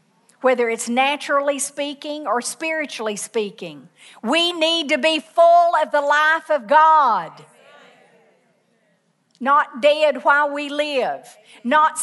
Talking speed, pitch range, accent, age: 115 wpm, 240-300 Hz, American, 50-69